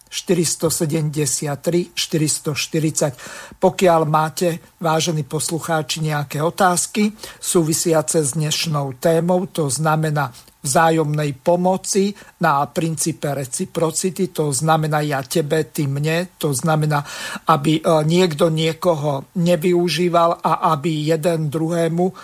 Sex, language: male, Slovak